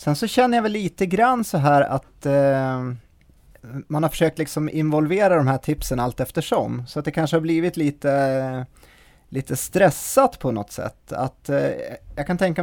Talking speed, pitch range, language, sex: 180 wpm, 120-150 Hz, Swedish, male